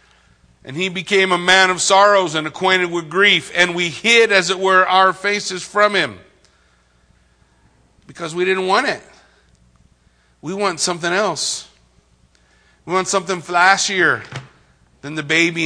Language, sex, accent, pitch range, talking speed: English, male, American, 170-230 Hz, 140 wpm